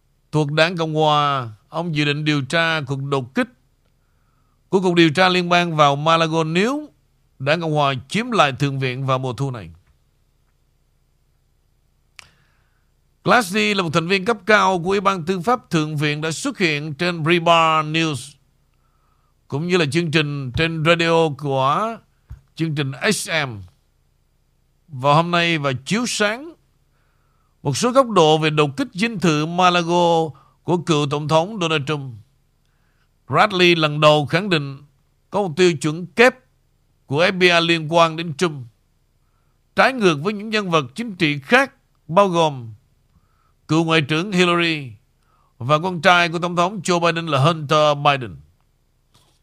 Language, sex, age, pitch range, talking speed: Vietnamese, male, 60-79, 145-180 Hz, 155 wpm